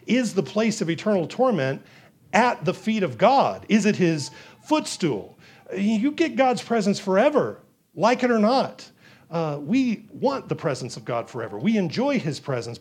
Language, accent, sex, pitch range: English, American, male, 140-200 Hz